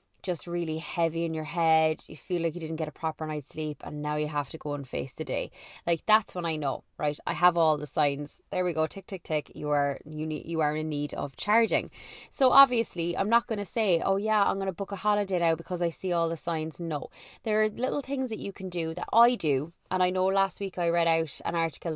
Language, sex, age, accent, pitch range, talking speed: English, female, 20-39, Irish, 165-200 Hz, 265 wpm